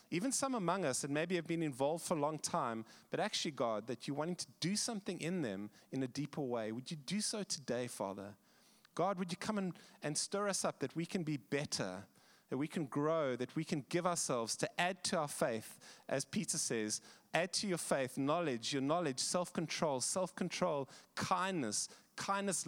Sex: male